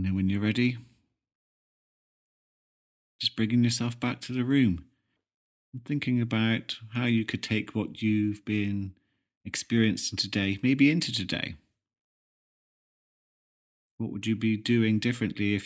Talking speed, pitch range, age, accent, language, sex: 130 wpm, 95-120 Hz, 40-59, British, English, male